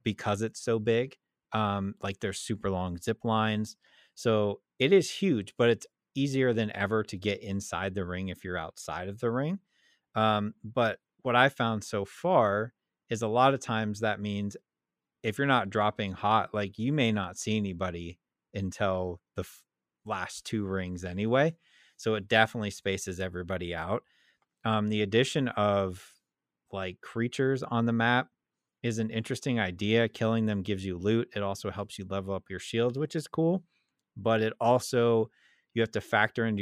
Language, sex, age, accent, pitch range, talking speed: English, male, 30-49, American, 95-115 Hz, 170 wpm